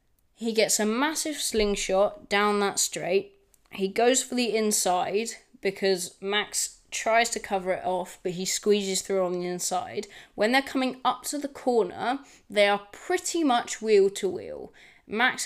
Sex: female